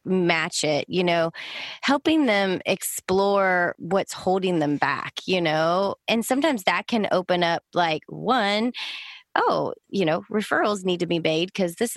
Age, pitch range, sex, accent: 20-39, 185-230 Hz, female, American